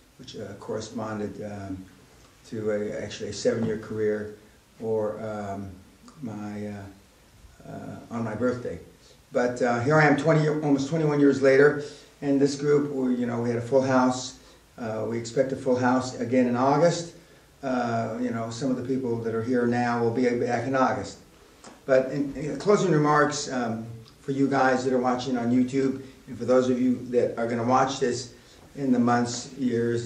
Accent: American